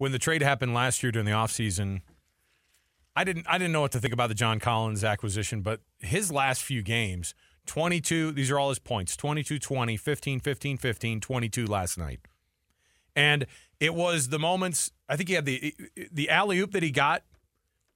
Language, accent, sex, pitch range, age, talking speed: English, American, male, 110-150 Hz, 40-59, 190 wpm